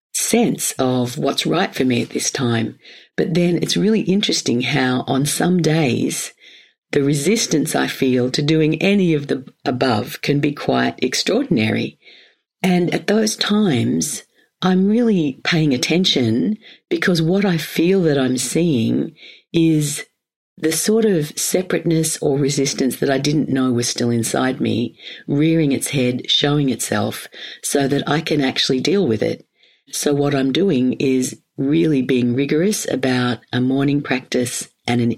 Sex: female